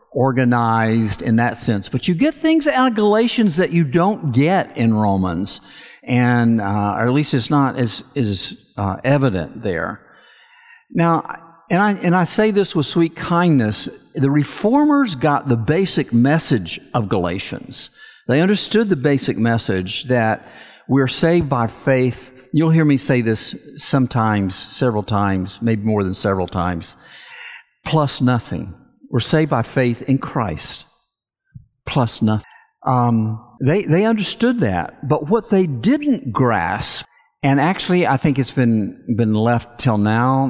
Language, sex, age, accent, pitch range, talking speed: English, male, 50-69, American, 110-155 Hz, 150 wpm